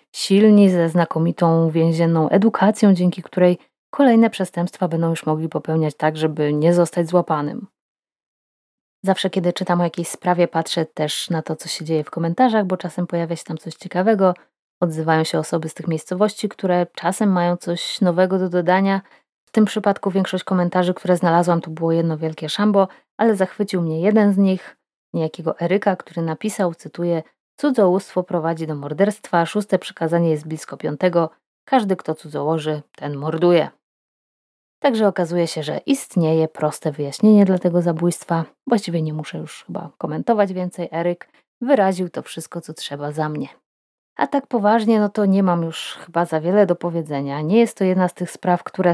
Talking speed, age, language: 165 wpm, 20-39, Polish